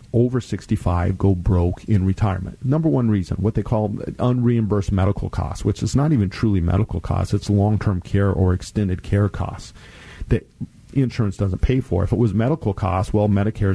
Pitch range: 100-115 Hz